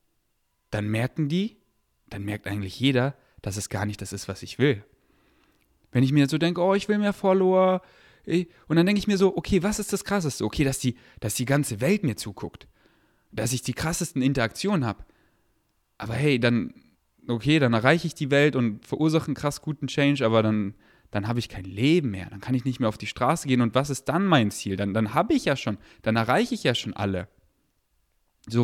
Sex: male